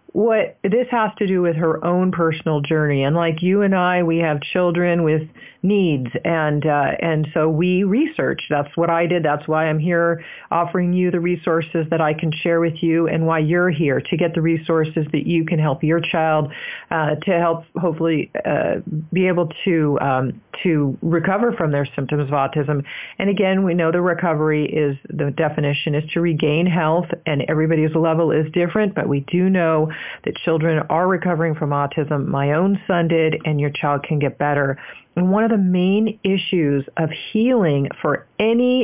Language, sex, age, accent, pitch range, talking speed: English, female, 40-59, American, 155-180 Hz, 190 wpm